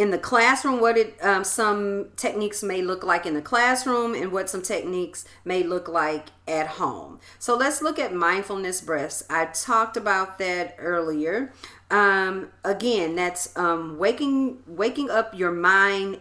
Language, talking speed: English, 160 wpm